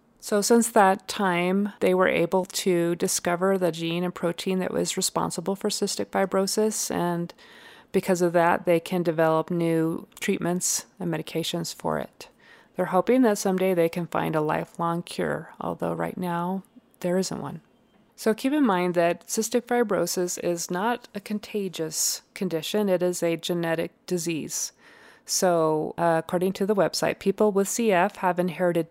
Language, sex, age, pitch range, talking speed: English, female, 30-49, 170-210 Hz, 160 wpm